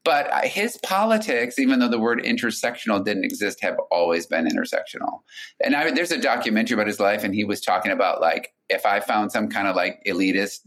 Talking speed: 195 wpm